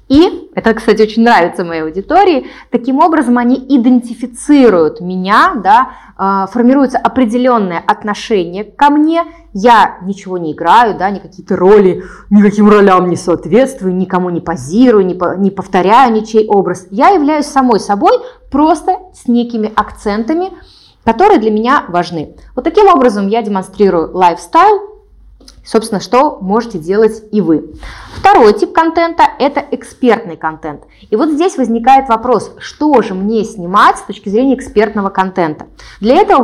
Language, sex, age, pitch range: Russian, female, 20-39, 190-270 Hz